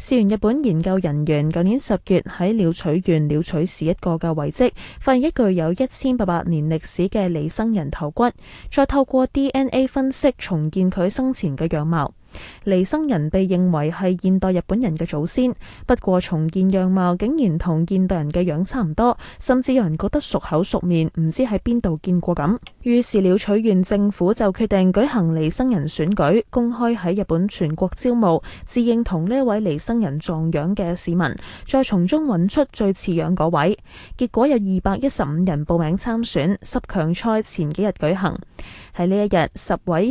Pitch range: 170-230 Hz